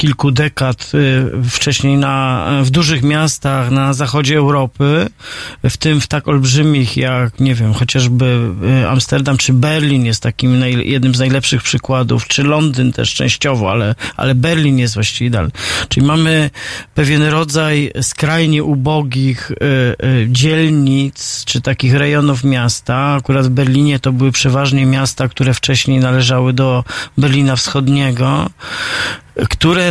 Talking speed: 135 wpm